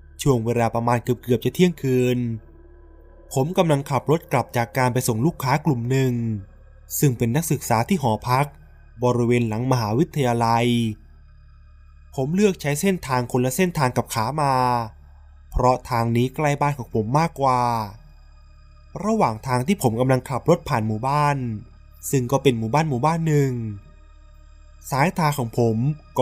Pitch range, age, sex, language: 110-140 Hz, 20-39, male, Thai